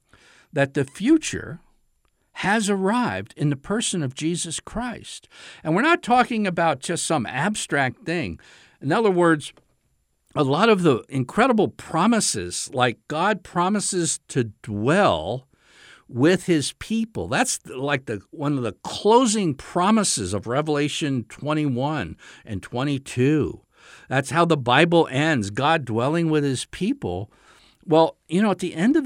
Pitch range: 125-165 Hz